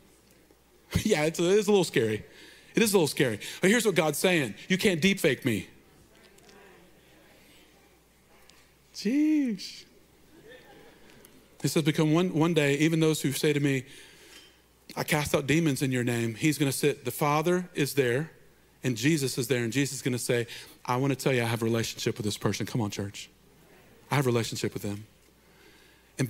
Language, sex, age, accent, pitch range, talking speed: English, male, 40-59, American, 125-155 Hz, 180 wpm